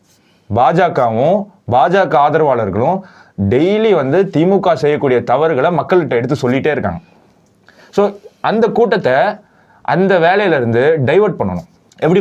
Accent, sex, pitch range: native, male, 120-155 Hz